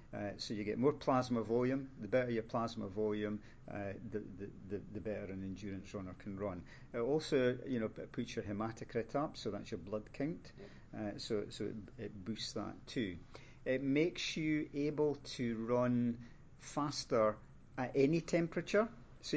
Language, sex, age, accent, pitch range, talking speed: English, male, 50-69, British, 105-130 Hz, 170 wpm